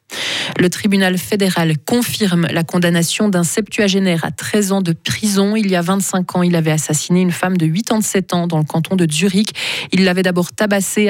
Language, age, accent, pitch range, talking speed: French, 20-39, French, 175-215 Hz, 190 wpm